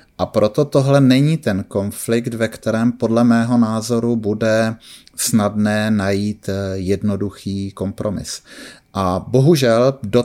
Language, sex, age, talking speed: English, male, 30-49, 110 wpm